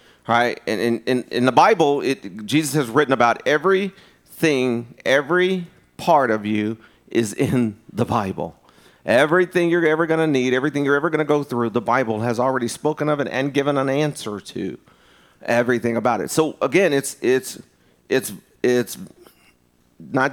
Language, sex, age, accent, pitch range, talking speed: English, male, 40-59, American, 125-155 Hz, 170 wpm